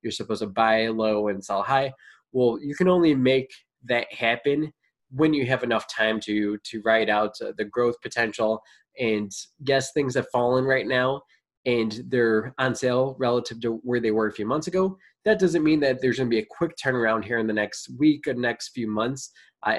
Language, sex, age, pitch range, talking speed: English, male, 20-39, 110-135 Hz, 205 wpm